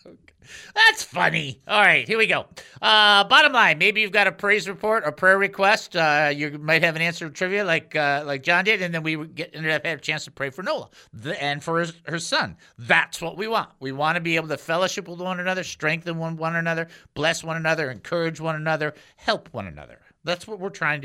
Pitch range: 150-195 Hz